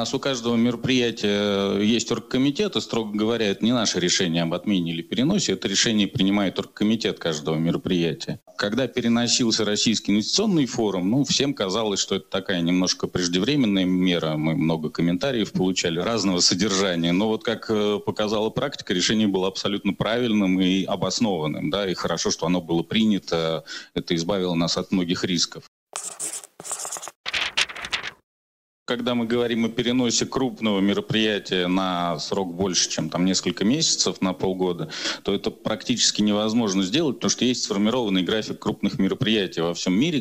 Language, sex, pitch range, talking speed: Russian, male, 90-110 Hz, 145 wpm